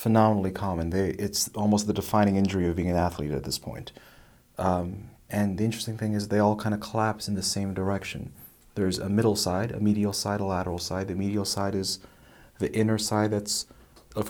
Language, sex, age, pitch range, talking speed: English, male, 30-49, 95-110 Hz, 205 wpm